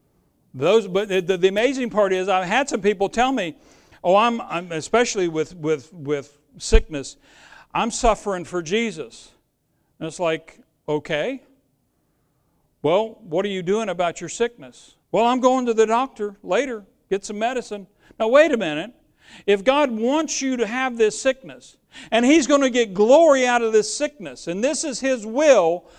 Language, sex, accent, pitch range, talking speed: English, male, American, 210-285 Hz, 175 wpm